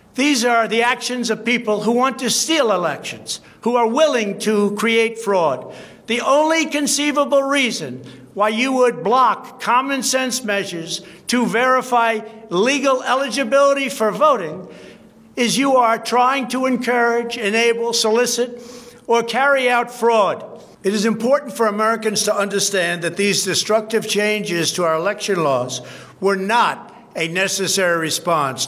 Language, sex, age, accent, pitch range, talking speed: Spanish, male, 60-79, American, 195-235 Hz, 140 wpm